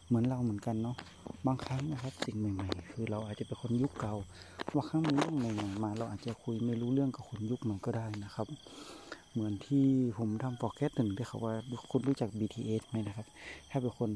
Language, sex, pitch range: Thai, male, 110-130 Hz